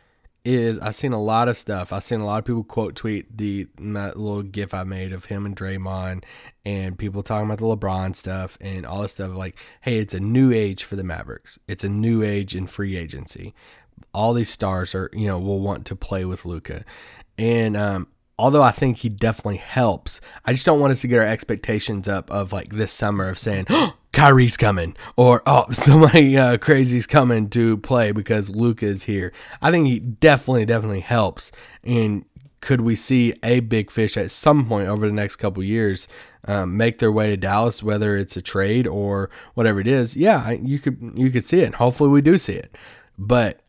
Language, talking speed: English, 215 wpm